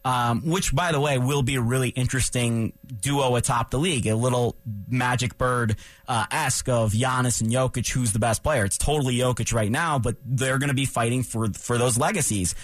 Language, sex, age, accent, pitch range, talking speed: English, male, 30-49, American, 120-140 Hz, 195 wpm